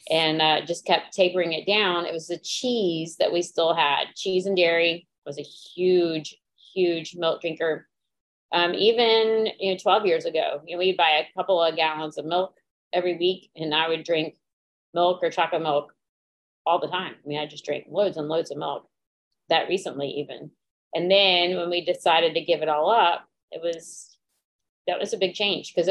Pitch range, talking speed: 155-190 Hz, 195 wpm